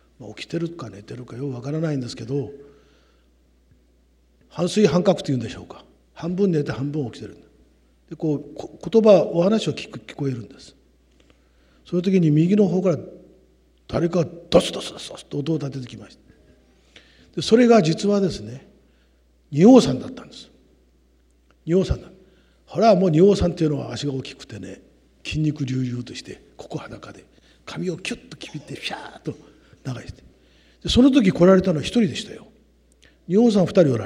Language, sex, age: Japanese, male, 50-69